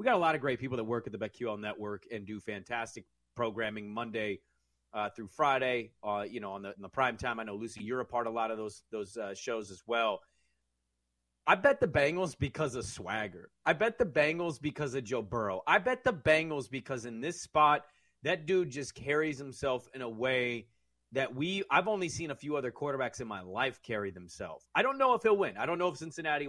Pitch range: 105-155 Hz